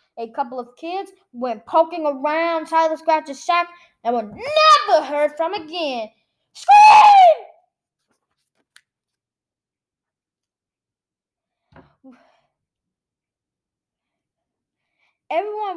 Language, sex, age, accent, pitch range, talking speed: English, female, 10-29, American, 240-325 Hz, 70 wpm